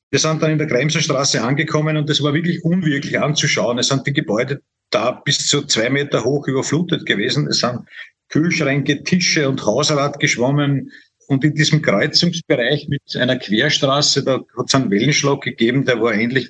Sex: male